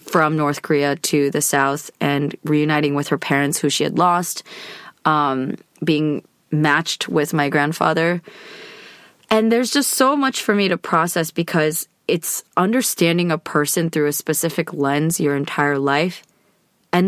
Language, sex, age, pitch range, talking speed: English, female, 20-39, 150-180 Hz, 150 wpm